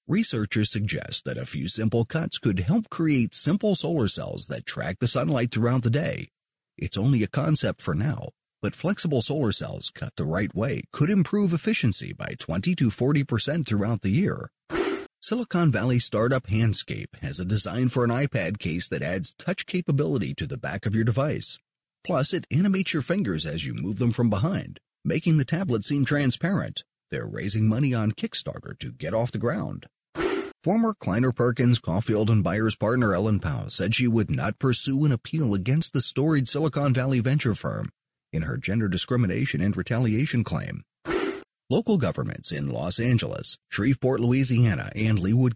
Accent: American